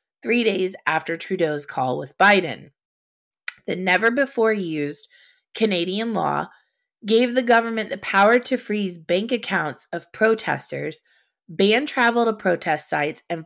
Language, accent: English, American